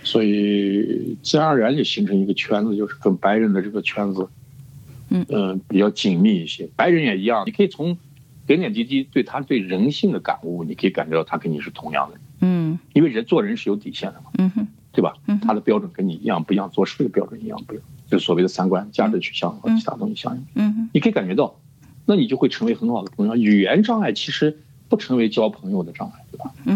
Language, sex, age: English, male, 50-69